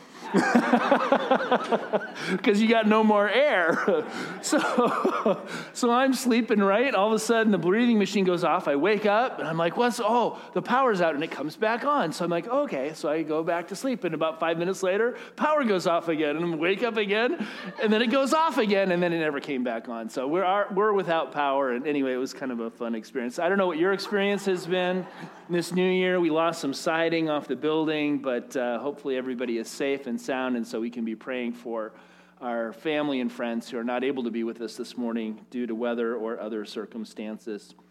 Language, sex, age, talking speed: English, male, 40-59, 225 wpm